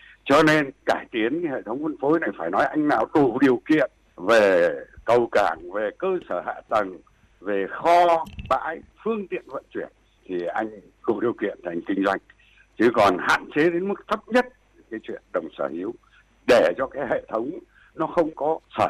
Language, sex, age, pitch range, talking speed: Vietnamese, male, 60-79, 130-200 Hz, 195 wpm